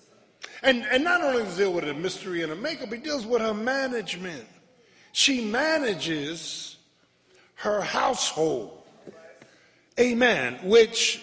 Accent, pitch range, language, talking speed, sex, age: American, 175-245 Hz, English, 130 wpm, male, 50-69